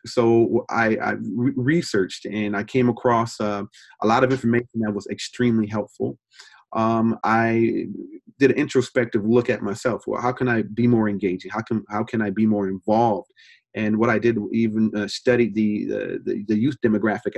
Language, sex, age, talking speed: English, male, 30-49, 185 wpm